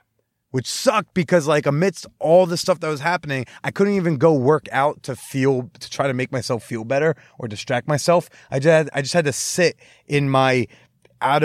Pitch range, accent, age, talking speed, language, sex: 130-170 Hz, American, 20-39, 210 wpm, English, male